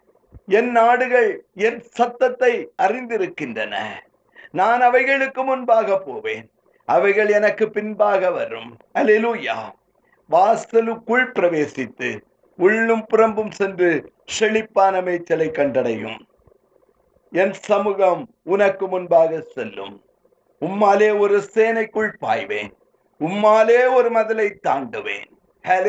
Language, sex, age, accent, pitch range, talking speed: Tamil, male, 50-69, native, 175-245 Hz, 75 wpm